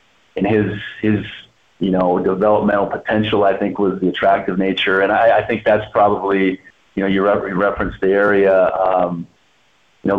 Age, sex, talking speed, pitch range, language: 40-59, male, 165 wpm, 95-100 Hz, English